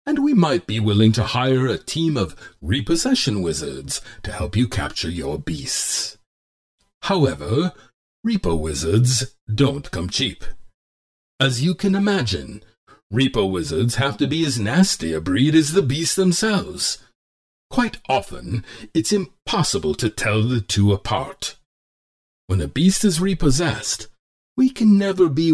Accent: American